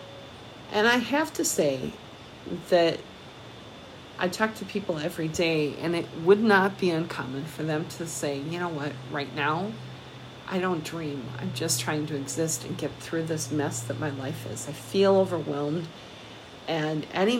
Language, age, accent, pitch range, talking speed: English, 50-69, American, 140-170 Hz, 170 wpm